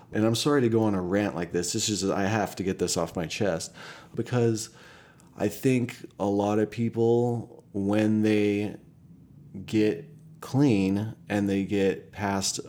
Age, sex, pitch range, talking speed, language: 30-49, male, 95-110 Hz, 165 wpm, English